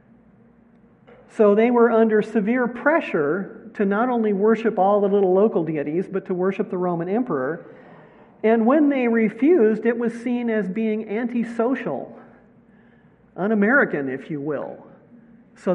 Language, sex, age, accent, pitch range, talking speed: English, male, 50-69, American, 185-225 Hz, 135 wpm